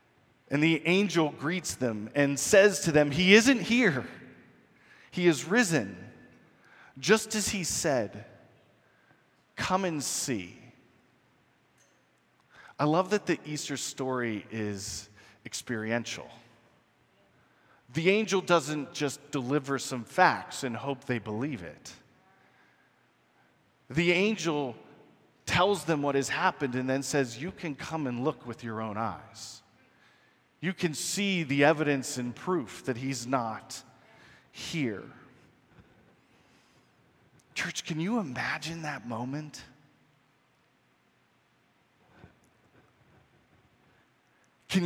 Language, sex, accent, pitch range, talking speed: English, male, American, 130-180 Hz, 105 wpm